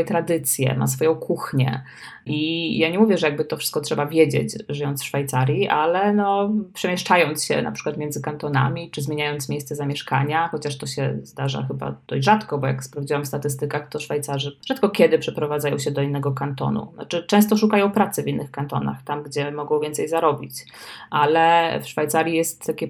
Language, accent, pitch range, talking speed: Polish, native, 140-160 Hz, 175 wpm